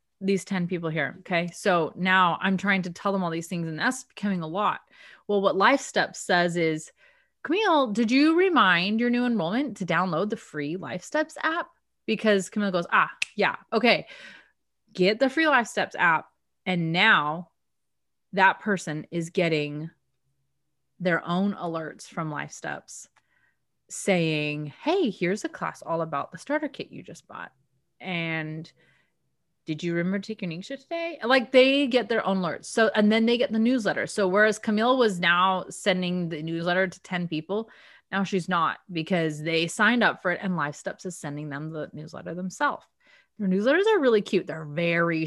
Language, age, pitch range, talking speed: English, 30-49, 165-220 Hz, 175 wpm